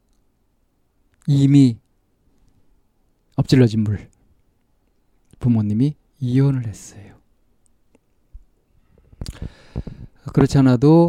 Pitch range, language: 105-135 Hz, Korean